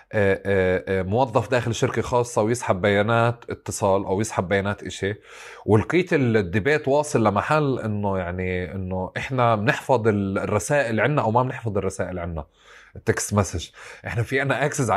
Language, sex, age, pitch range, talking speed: Arabic, male, 30-49, 100-130 Hz, 130 wpm